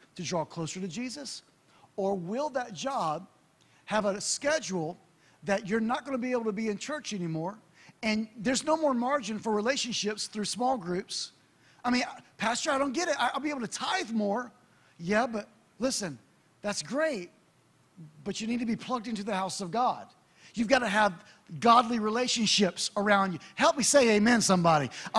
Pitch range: 195-270 Hz